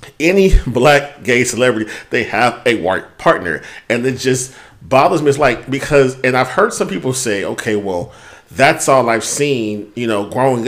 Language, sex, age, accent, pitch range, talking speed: English, male, 40-59, American, 110-140 Hz, 180 wpm